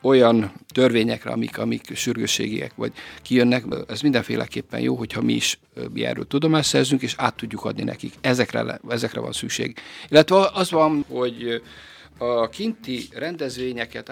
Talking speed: 130 wpm